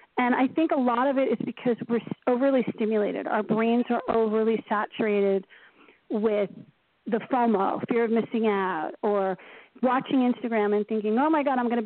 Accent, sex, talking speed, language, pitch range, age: American, female, 175 wpm, English, 215-250 Hz, 40-59